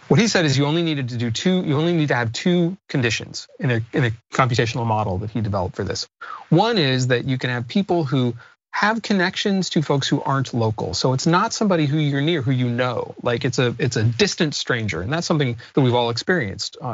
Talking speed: 235 wpm